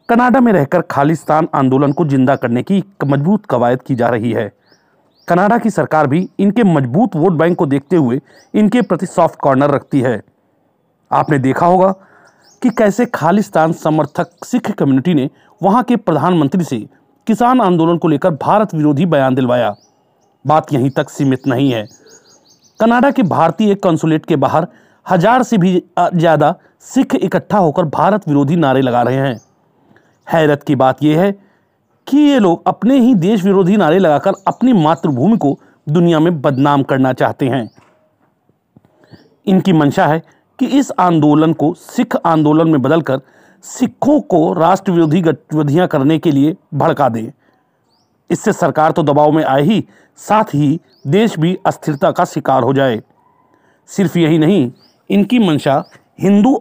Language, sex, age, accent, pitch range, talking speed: Hindi, male, 40-59, native, 140-190 Hz, 155 wpm